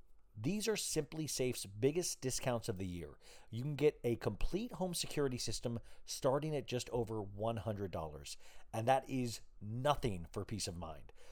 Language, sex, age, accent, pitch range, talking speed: English, male, 40-59, American, 105-145 Hz, 160 wpm